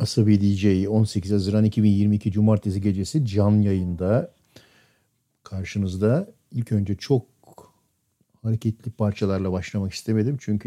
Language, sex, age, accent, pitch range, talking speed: Turkish, male, 50-69, native, 95-115 Hz, 100 wpm